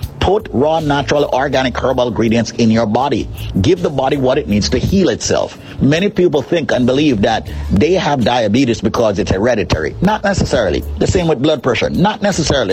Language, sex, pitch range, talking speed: English, male, 105-145 Hz, 185 wpm